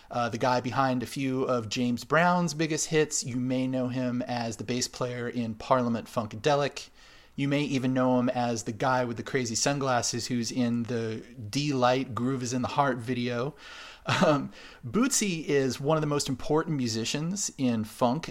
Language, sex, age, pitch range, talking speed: English, male, 30-49, 115-140 Hz, 180 wpm